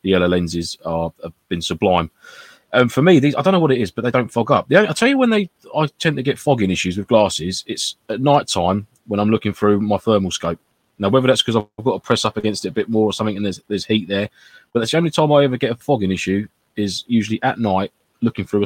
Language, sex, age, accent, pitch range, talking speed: English, male, 20-39, British, 100-130 Hz, 270 wpm